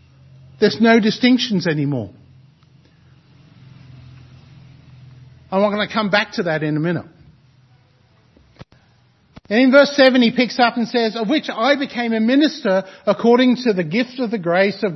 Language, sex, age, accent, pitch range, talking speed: English, male, 50-69, Australian, 155-230 Hz, 155 wpm